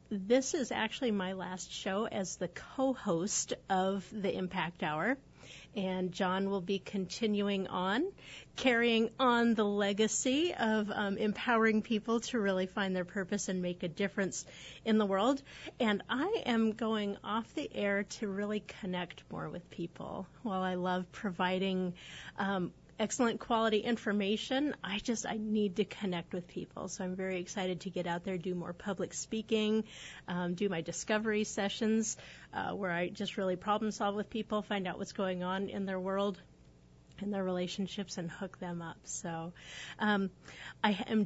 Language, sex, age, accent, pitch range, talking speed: English, female, 30-49, American, 185-220 Hz, 165 wpm